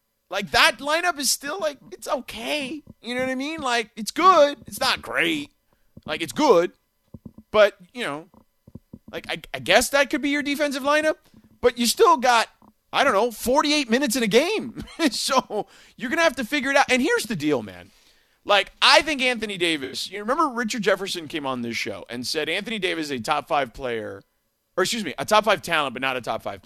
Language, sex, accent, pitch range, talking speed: English, male, American, 155-260 Hz, 215 wpm